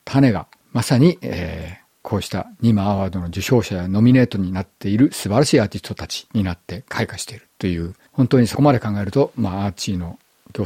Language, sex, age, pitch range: Japanese, male, 50-69, 95-125 Hz